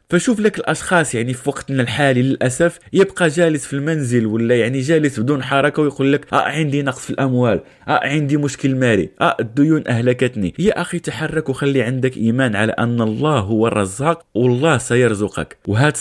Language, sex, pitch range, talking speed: Arabic, male, 115-155 Hz, 170 wpm